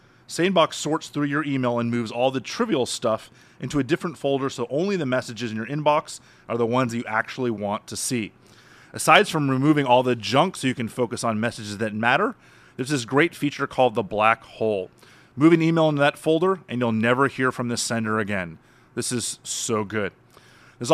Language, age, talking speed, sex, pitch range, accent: English, 30-49, 205 wpm, male, 120-145 Hz, American